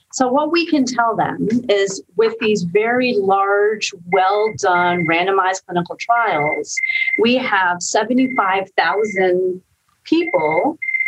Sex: female